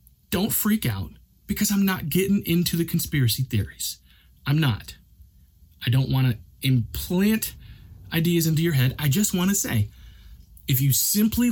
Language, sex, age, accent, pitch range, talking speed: English, male, 30-49, American, 110-145 Hz, 155 wpm